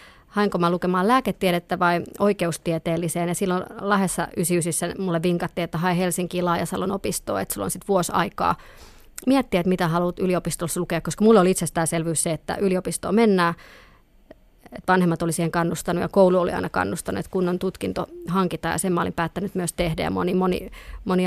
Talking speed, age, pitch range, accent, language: 170 wpm, 30-49, 170-190 Hz, native, Finnish